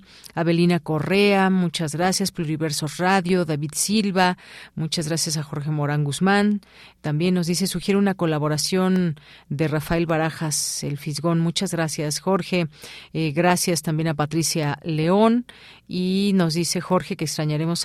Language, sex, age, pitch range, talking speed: Spanish, female, 40-59, 150-185 Hz, 135 wpm